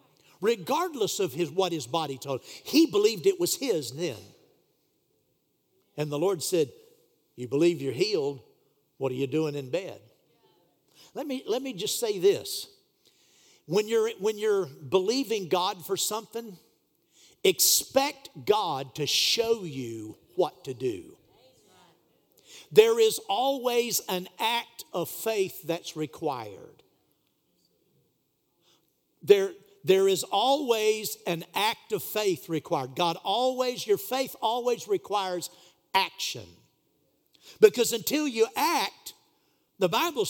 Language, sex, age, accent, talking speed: English, male, 50-69, American, 120 wpm